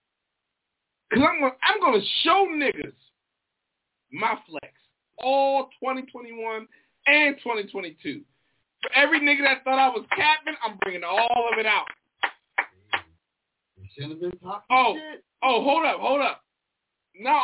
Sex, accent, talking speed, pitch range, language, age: male, American, 115 wpm, 155-260 Hz, English, 20-39